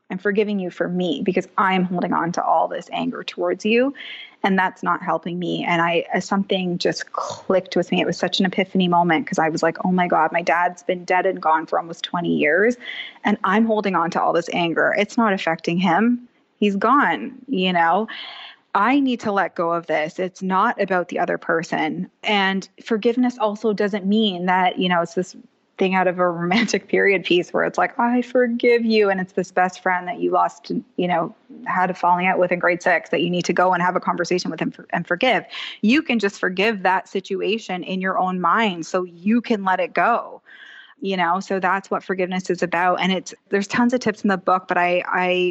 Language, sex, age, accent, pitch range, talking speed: English, female, 20-39, American, 180-210 Hz, 220 wpm